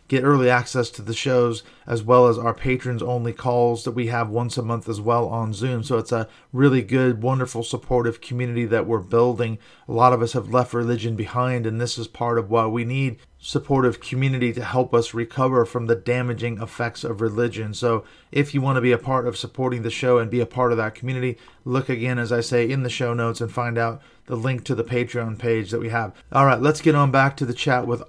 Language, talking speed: English, 235 wpm